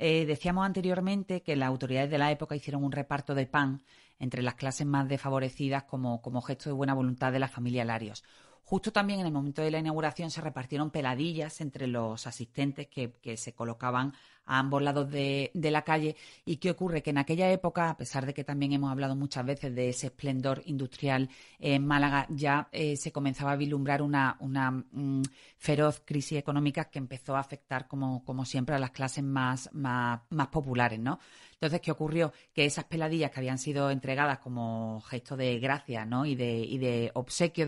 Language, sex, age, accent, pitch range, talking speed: Spanish, female, 40-59, Spanish, 130-150 Hz, 190 wpm